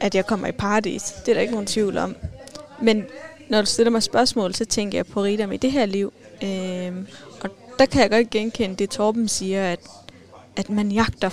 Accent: native